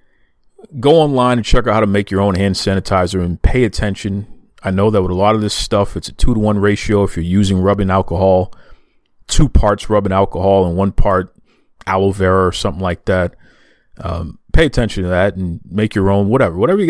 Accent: American